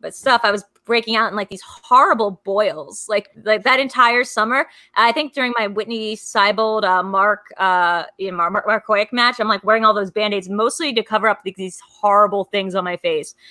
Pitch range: 205-260 Hz